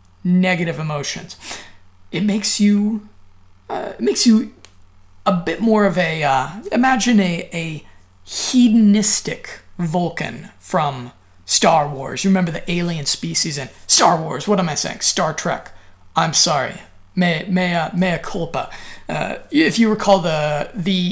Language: English